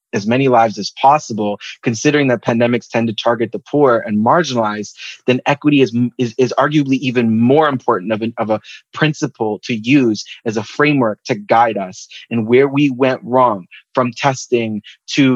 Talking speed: 175 wpm